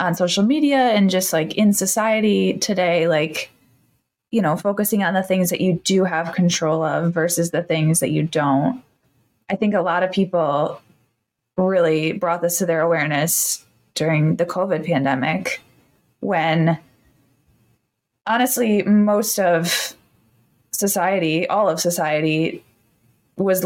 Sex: female